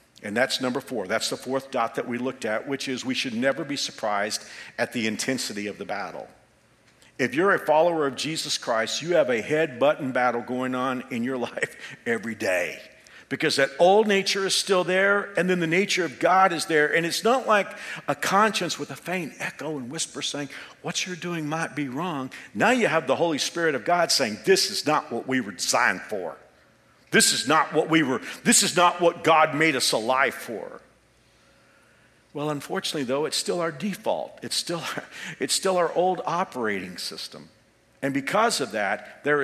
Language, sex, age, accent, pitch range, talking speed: English, male, 50-69, American, 125-180 Hz, 195 wpm